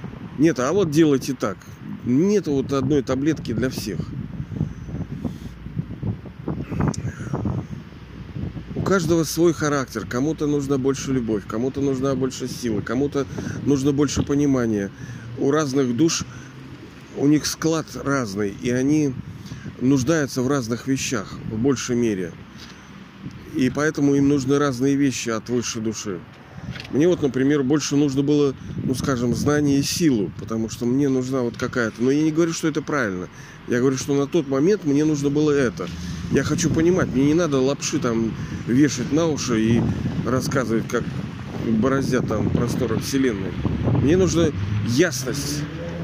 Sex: male